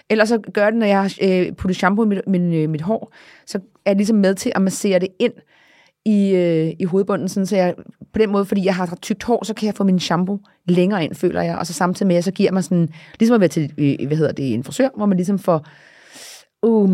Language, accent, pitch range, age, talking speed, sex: Danish, native, 165-200 Hz, 30-49, 260 wpm, female